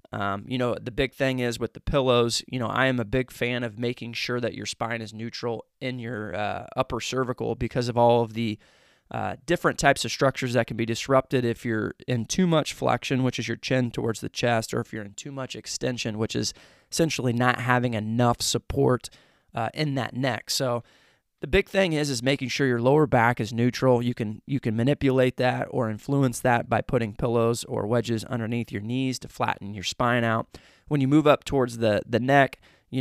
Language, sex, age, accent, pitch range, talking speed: English, male, 20-39, American, 115-130 Hz, 215 wpm